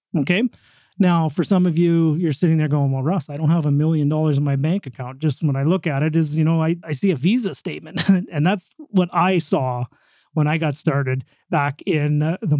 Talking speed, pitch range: 235 wpm, 145-175 Hz